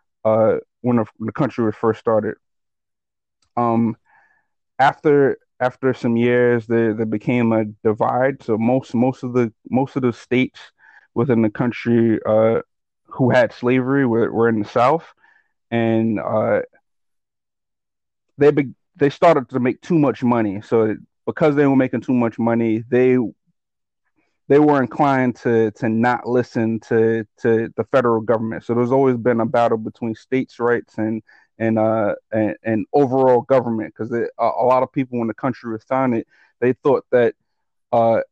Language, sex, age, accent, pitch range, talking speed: English, male, 30-49, American, 115-130 Hz, 155 wpm